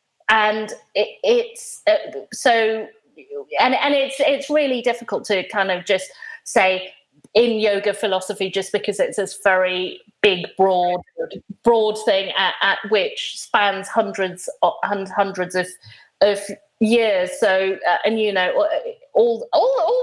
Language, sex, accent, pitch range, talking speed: English, female, British, 185-240 Hz, 135 wpm